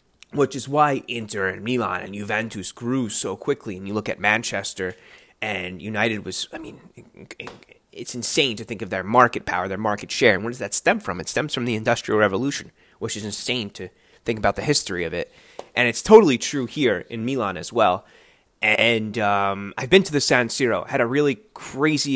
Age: 20-39